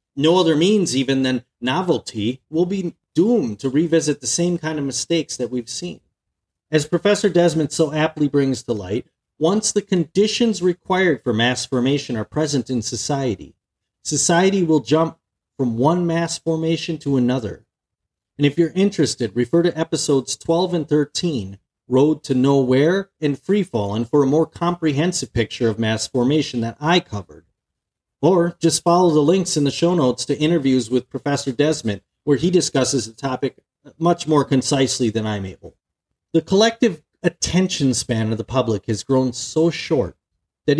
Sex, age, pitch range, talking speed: male, 40-59, 130-170 Hz, 165 wpm